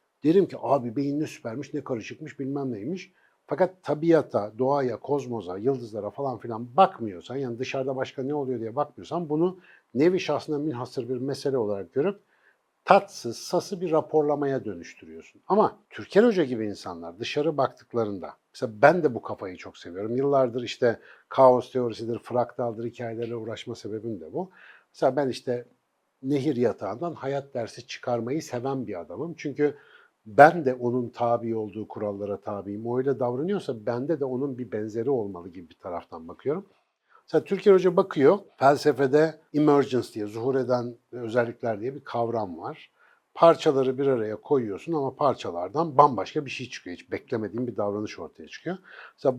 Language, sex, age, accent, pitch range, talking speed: Turkish, male, 60-79, native, 120-155 Hz, 150 wpm